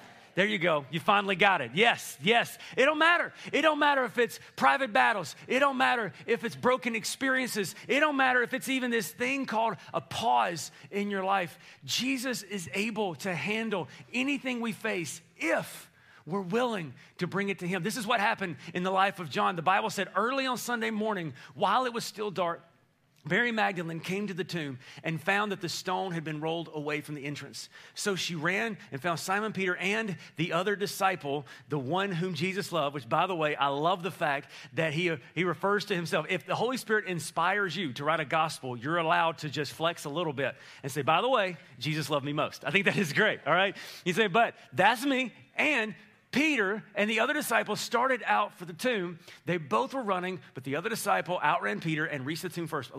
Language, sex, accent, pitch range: English, male, American, 160-225 Hz